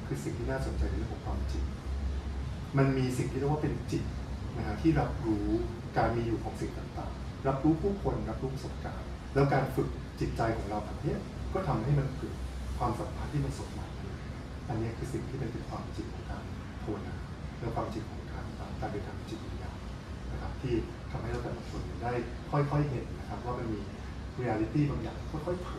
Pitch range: 75-125 Hz